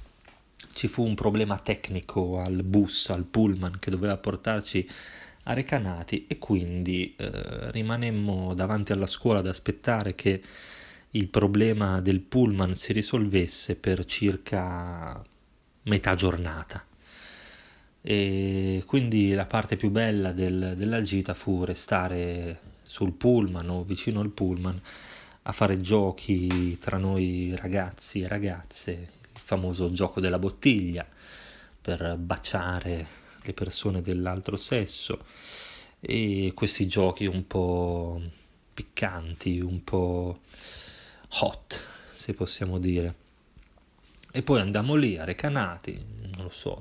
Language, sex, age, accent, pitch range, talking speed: Italian, male, 20-39, native, 90-105 Hz, 115 wpm